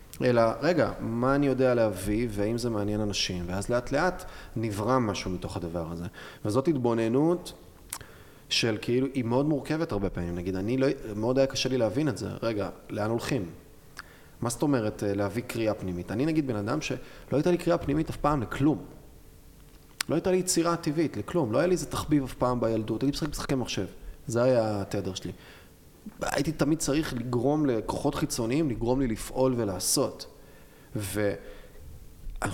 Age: 30-49